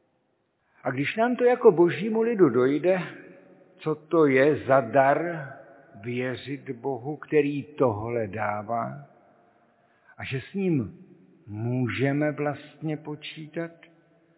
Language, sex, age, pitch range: Czech, male, 60-79, 130-165 Hz